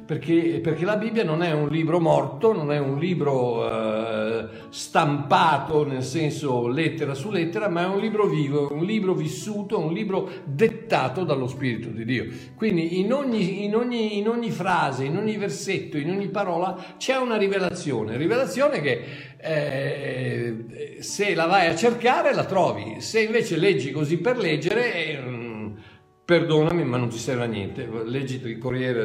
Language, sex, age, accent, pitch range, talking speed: Italian, male, 60-79, native, 125-185 Hz, 155 wpm